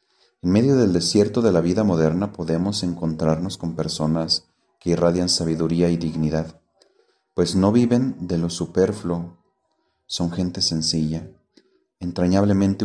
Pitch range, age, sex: 85-110 Hz, 30-49, male